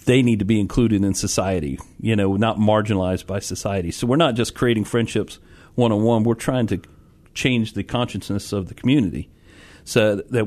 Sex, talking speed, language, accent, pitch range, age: male, 180 wpm, English, American, 100-120 Hz, 40-59